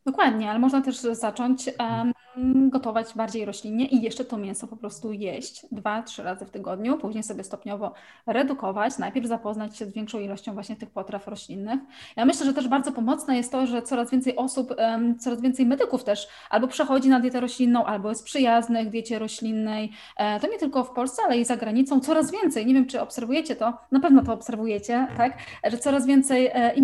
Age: 20-39